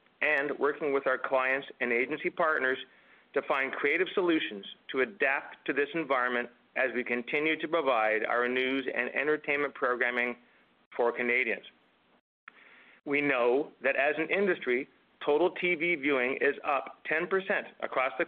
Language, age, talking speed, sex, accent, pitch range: English, 40-59, 140 wpm, male, American, 130-160 Hz